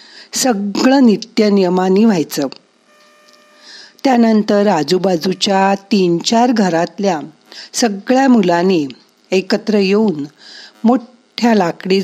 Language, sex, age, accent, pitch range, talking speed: Marathi, female, 50-69, native, 175-225 Hz, 70 wpm